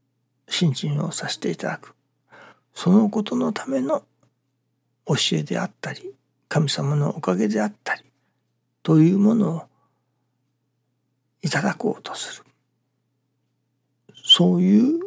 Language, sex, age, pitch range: Japanese, male, 60-79, 125-210 Hz